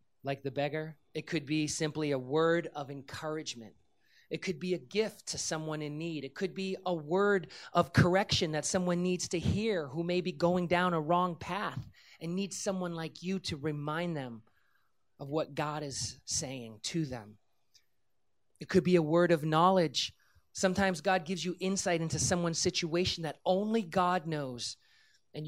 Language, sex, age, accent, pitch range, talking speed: English, male, 30-49, American, 130-180 Hz, 175 wpm